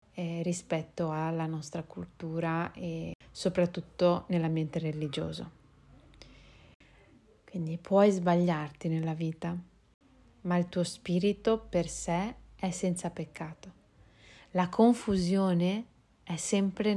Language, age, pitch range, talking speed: Italian, 30-49, 165-190 Hz, 95 wpm